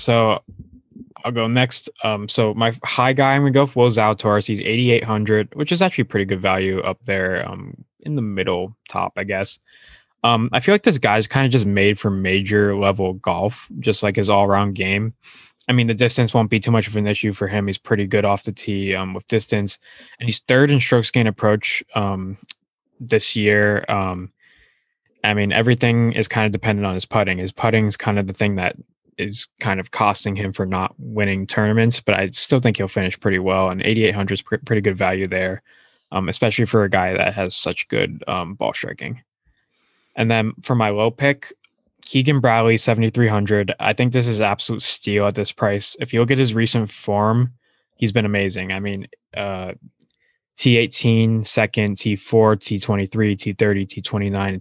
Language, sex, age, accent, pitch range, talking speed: English, male, 20-39, American, 100-115 Hz, 195 wpm